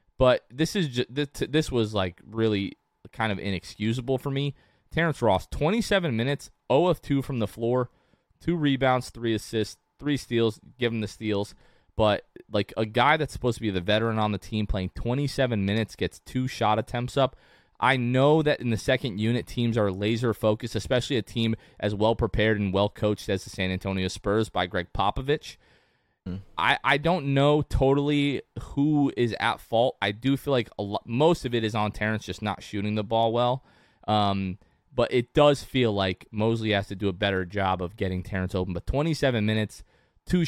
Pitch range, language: 105-130 Hz, English